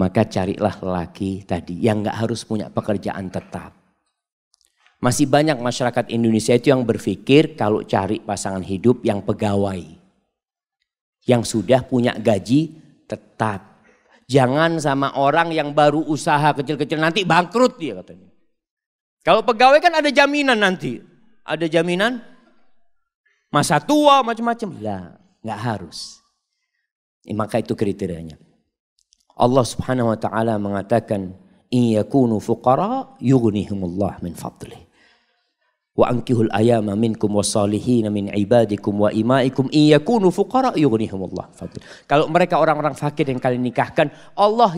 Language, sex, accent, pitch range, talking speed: Indonesian, male, native, 110-180 Hz, 105 wpm